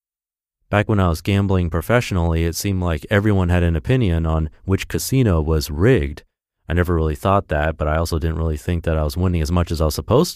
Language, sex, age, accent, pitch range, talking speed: English, male, 30-49, American, 85-115 Hz, 225 wpm